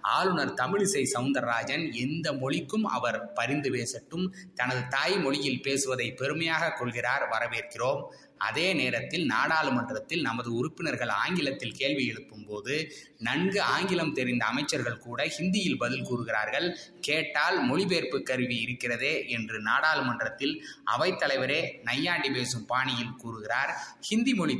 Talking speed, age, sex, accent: 110 wpm, 20-39, male, native